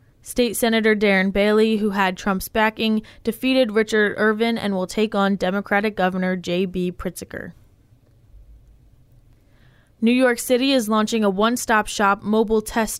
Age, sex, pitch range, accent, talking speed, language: 10-29, female, 185-220 Hz, American, 140 wpm, English